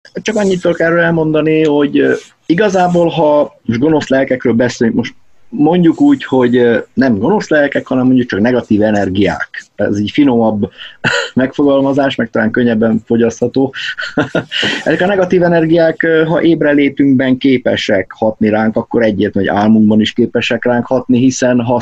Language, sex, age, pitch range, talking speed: Hungarian, male, 30-49, 110-130 Hz, 140 wpm